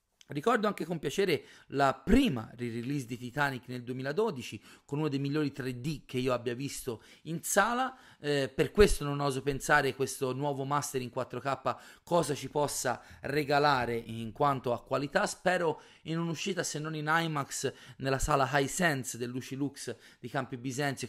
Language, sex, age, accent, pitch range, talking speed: Italian, male, 30-49, native, 125-150 Hz, 160 wpm